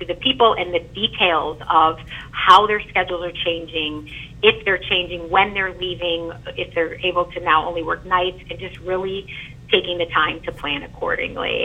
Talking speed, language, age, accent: 175 wpm, English, 30-49, American